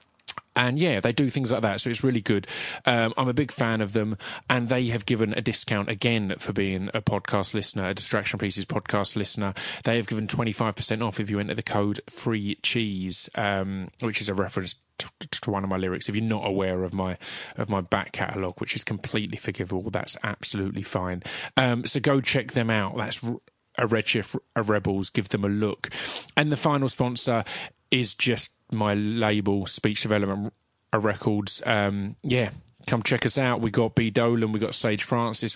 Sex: male